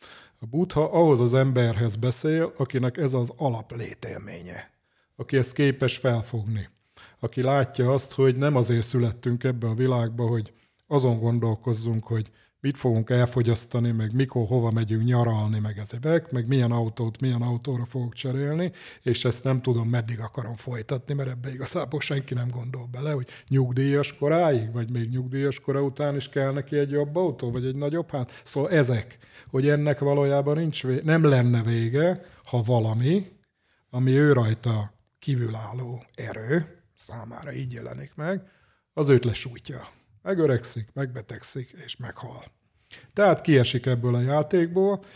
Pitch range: 120-140 Hz